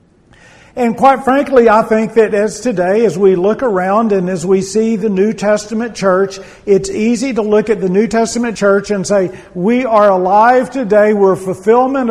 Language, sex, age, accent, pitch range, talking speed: English, male, 50-69, American, 165-215 Hz, 185 wpm